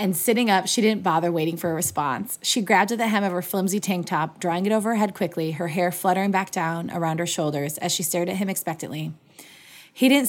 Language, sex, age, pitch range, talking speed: English, female, 20-39, 170-210 Hz, 245 wpm